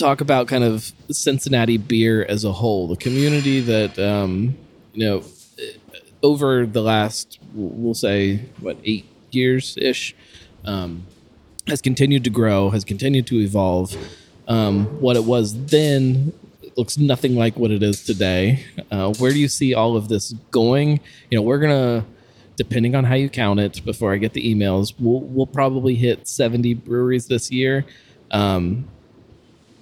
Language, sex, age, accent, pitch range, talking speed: English, male, 20-39, American, 105-130 Hz, 155 wpm